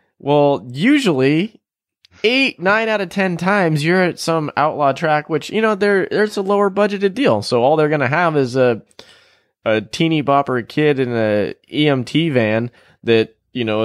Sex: male